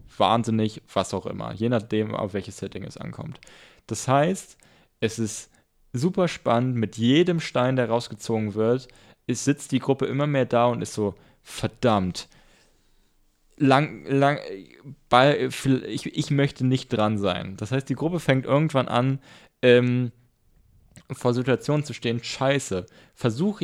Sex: male